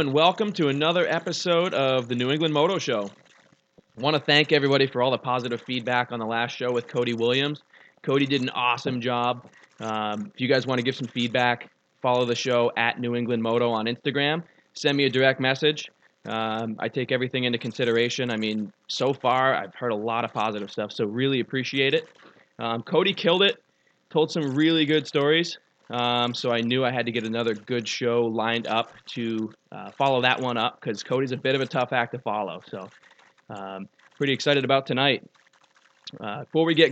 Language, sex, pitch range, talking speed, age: English, male, 115-140 Hz, 205 wpm, 20-39